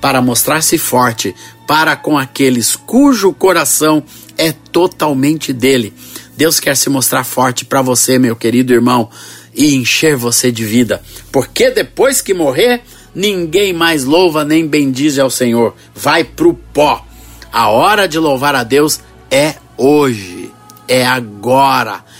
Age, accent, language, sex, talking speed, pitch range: 50-69, Brazilian, Portuguese, male, 140 wpm, 125-160 Hz